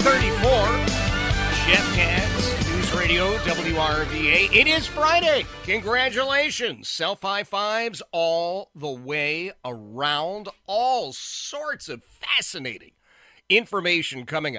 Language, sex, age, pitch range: English, male, 50-69, 110-185 Hz